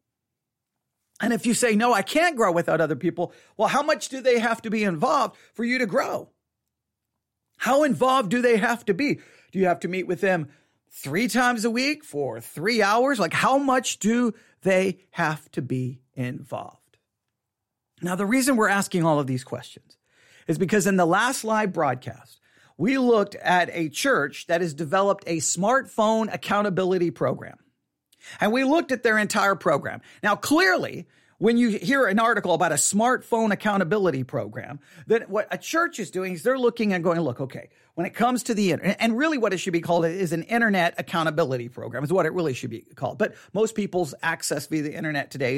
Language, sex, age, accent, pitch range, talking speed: English, male, 40-59, American, 160-225 Hz, 195 wpm